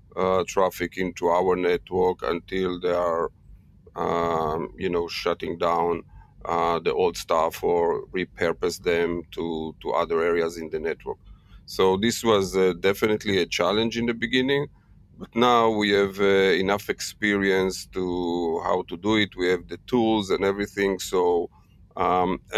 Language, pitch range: English, 90-105 Hz